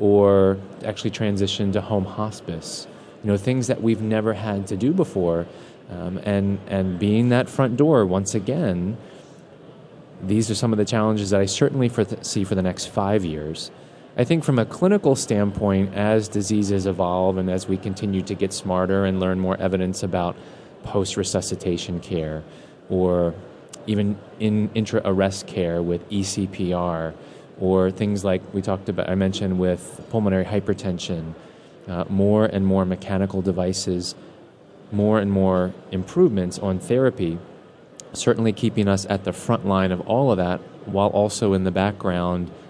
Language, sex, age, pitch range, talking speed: English, male, 20-39, 90-105 Hz, 155 wpm